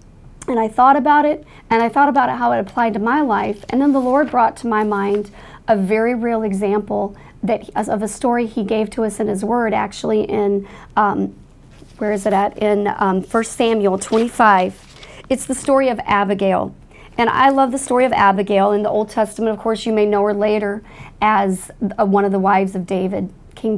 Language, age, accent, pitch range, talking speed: English, 40-59, American, 200-230 Hz, 205 wpm